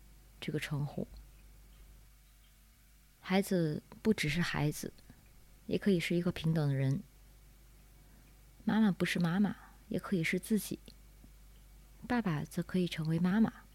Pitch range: 140-190 Hz